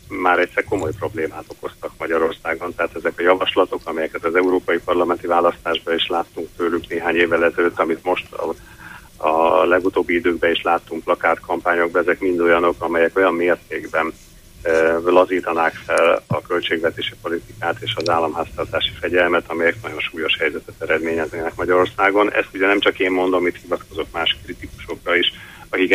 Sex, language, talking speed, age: male, Hungarian, 150 wpm, 40-59